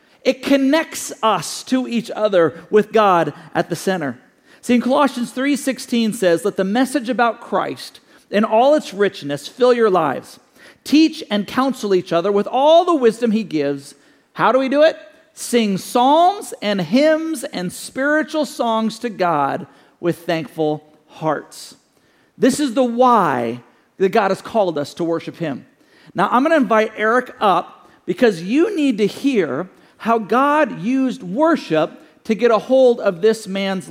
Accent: American